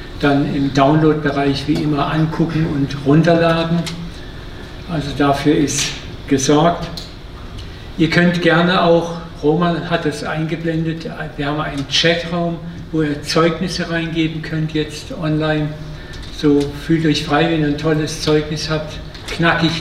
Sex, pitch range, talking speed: male, 145-160 Hz, 125 wpm